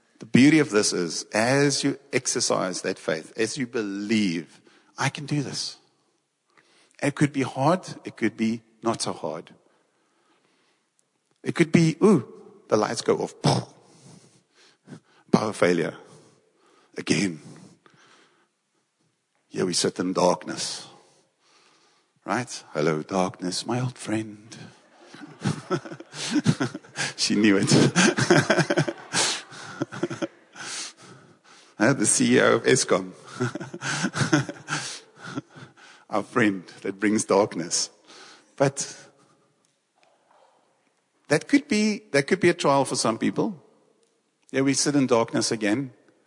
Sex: male